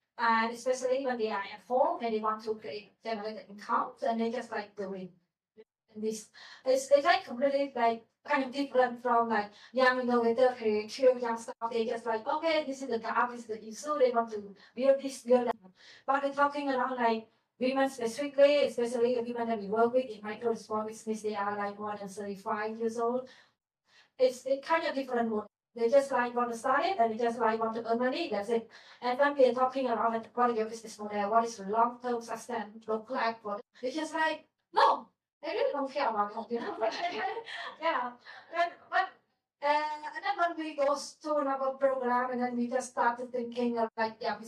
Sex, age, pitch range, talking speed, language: female, 30-49, 225-275 Hz, 210 wpm, English